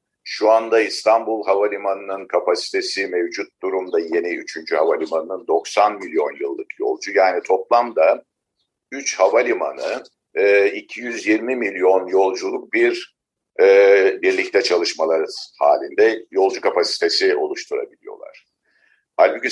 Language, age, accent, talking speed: Turkish, 50-69, native, 95 wpm